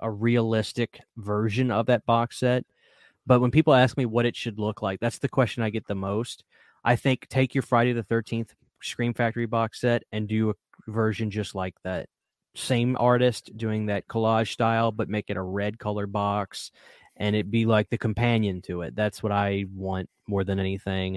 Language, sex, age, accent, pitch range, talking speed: English, male, 20-39, American, 100-120 Hz, 200 wpm